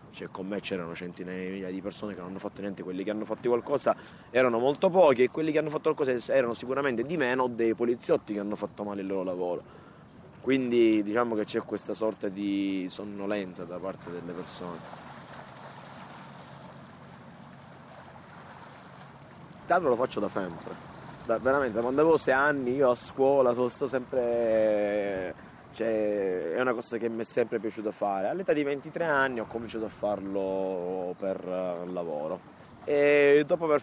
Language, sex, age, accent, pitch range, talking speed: Italian, male, 20-39, native, 95-120 Hz, 165 wpm